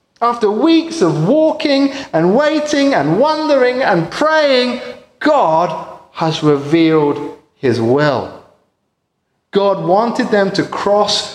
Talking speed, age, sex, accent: 105 wpm, 30-49, male, British